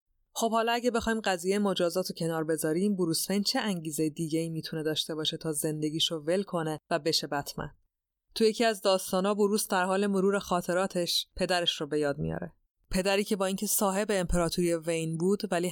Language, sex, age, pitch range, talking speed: Persian, female, 30-49, 160-190 Hz, 185 wpm